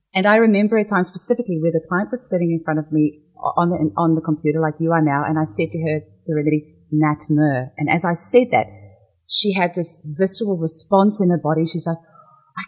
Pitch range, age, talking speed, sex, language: 150-195 Hz, 30-49, 230 wpm, female, English